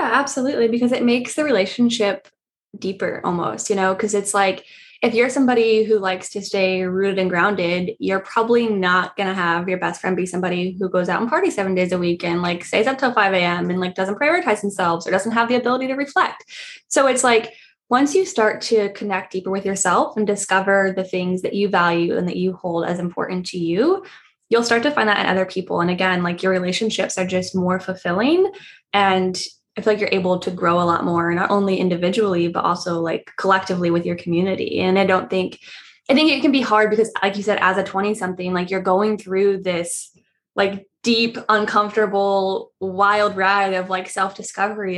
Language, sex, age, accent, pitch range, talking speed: English, female, 10-29, American, 185-235 Hz, 210 wpm